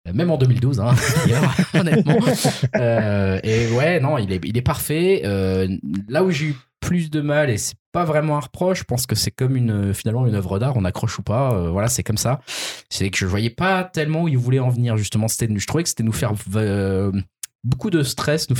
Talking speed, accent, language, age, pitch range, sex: 230 wpm, French, French, 20-39, 105-145 Hz, male